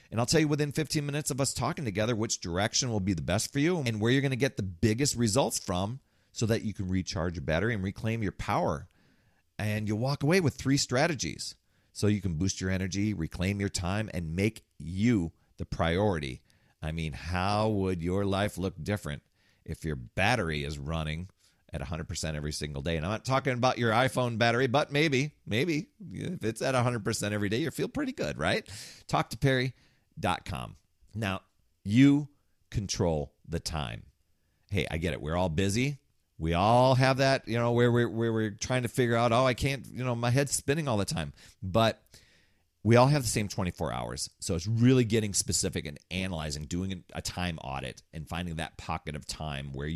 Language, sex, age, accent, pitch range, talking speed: English, male, 40-59, American, 85-120 Hz, 200 wpm